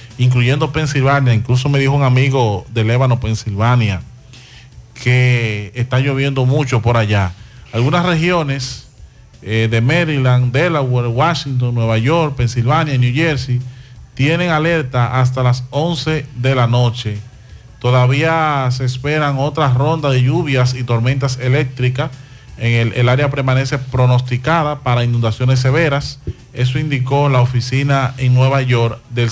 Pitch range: 120-145 Hz